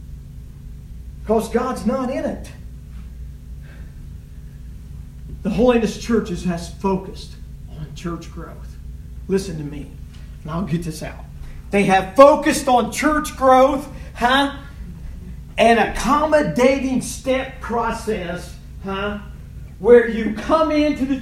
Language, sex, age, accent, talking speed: English, male, 50-69, American, 105 wpm